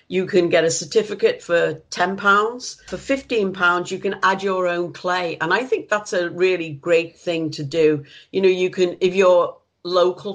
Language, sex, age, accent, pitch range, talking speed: English, female, 50-69, British, 165-195 Hz, 185 wpm